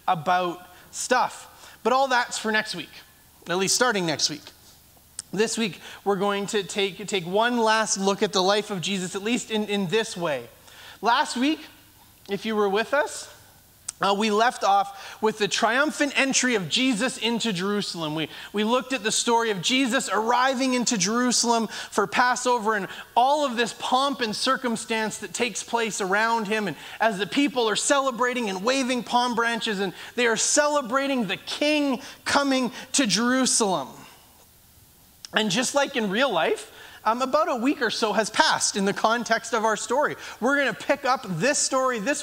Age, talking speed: 30-49, 180 wpm